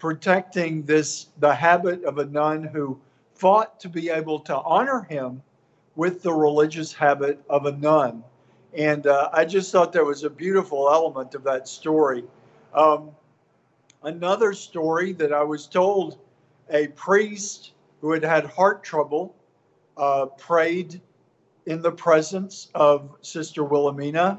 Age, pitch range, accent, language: 50-69, 145-175 Hz, American, English